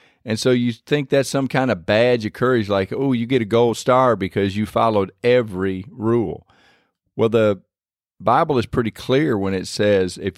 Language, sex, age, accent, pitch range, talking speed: English, male, 50-69, American, 95-125 Hz, 190 wpm